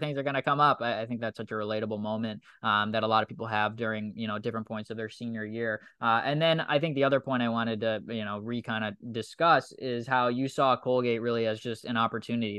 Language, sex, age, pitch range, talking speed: English, male, 10-29, 115-140 Hz, 265 wpm